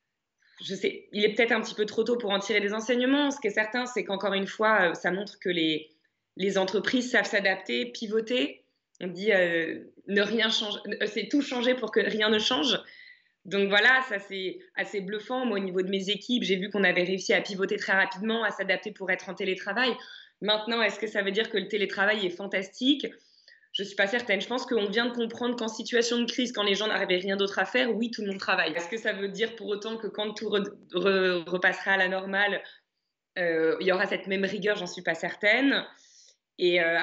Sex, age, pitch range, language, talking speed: female, 20-39, 185-225 Hz, French, 225 wpm